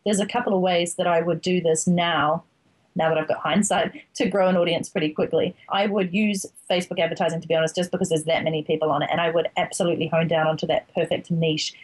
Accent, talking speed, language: Australian, 245 wpm, English